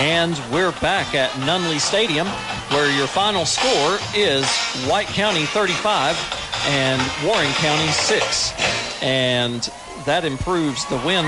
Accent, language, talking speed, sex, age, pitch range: American, English, 120 wpm, male, 40-59, 125-160 Hz